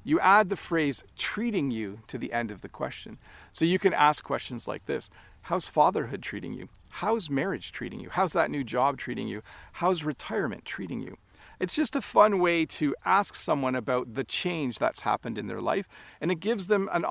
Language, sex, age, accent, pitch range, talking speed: English, male, 40-59, American, 130-175 Hz, 205 wpm